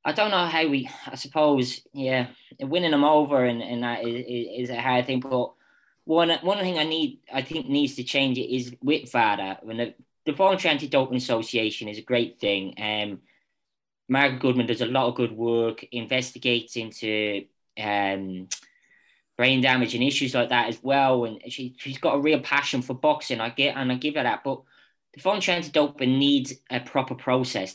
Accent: British